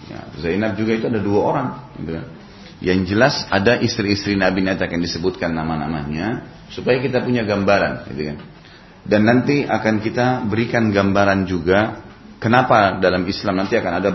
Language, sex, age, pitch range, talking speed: Indonesian, male, 30-49, 85-110 Hz, 155 wpm